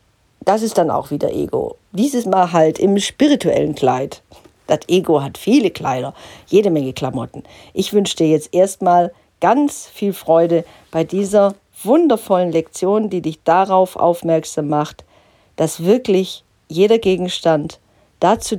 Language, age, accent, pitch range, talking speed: German, 50-69, German, 155-205 Hz, 135 wpm